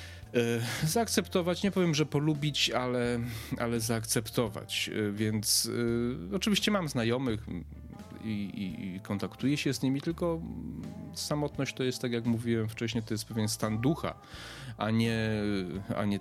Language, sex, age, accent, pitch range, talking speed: Polish, male, 30-49, native, 100-120 Hz, 125 wpm